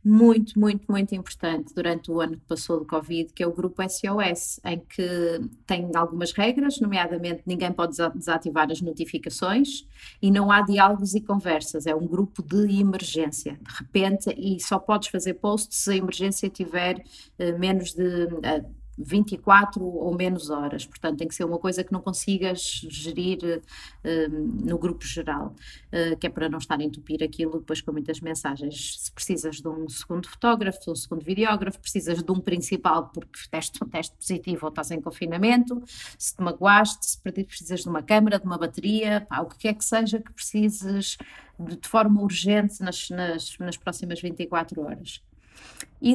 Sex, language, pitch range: female, Portuguese, 165-200 Hz